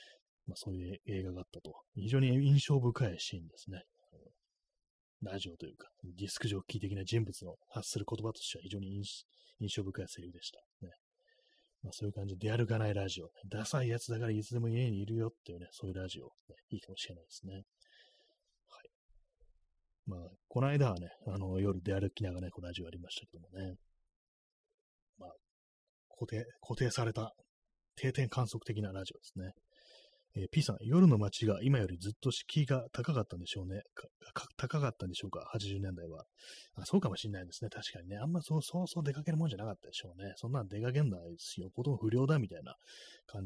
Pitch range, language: 95-125 Hz, Japanese